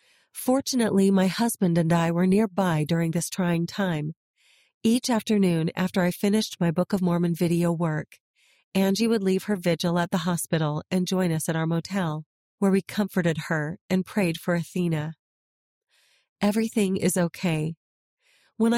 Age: 40-59